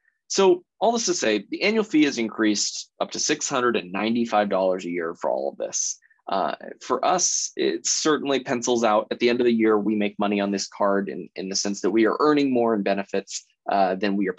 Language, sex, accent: English, male, American